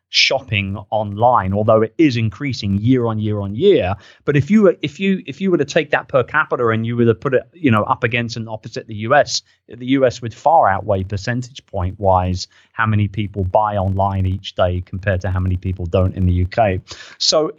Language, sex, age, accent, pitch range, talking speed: English, male, 30-49, British, 105-130 Hz, 220 wpm